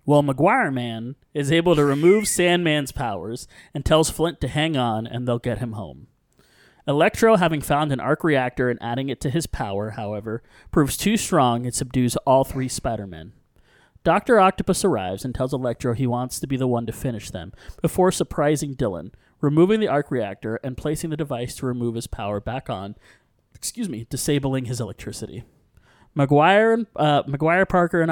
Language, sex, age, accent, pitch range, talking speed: English, male, 30-49, American, 120-160 Hz, 175 wpm